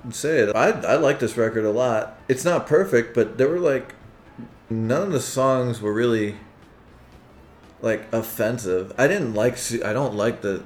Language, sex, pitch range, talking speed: English, male, 100-125 Hz, 175 wpm